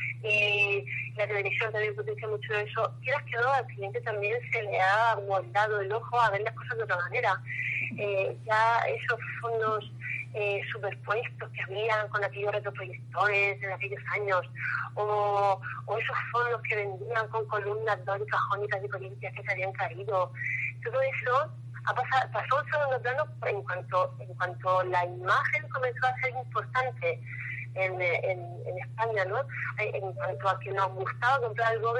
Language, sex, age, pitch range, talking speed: Spanish, female, 30-49, 120-195 Hz, 165 wpm